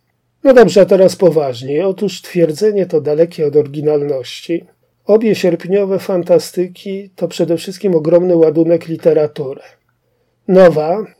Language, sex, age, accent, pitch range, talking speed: Polish, male, 40-59, native, 155-200 Hz, 115 wpm